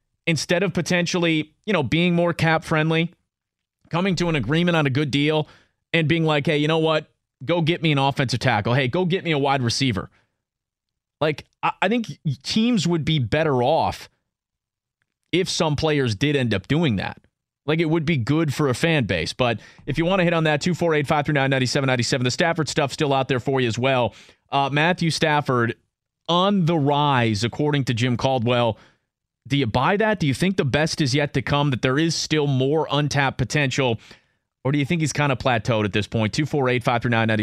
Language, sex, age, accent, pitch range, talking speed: English, male, 30-49, American, 125-160 Hz, 220 wpm